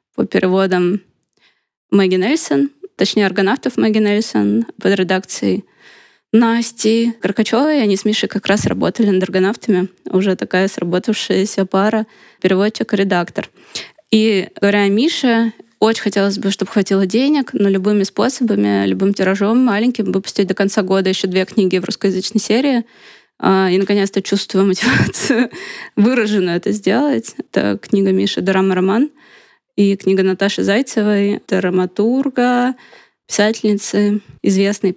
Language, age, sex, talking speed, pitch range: Russian, 20-39, female, 120 wpm, 190-220 Hz